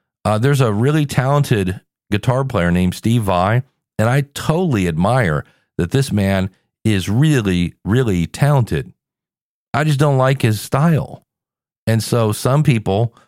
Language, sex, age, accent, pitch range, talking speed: English, male, 40-59, American, 105-140 Hz, 140 wpm